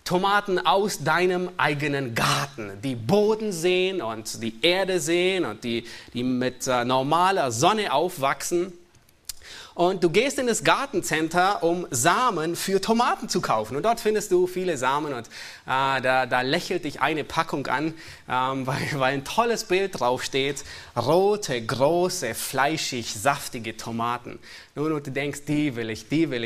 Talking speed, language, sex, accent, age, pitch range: 155 wpm, German, male, German, 30-49, 125-190 Hz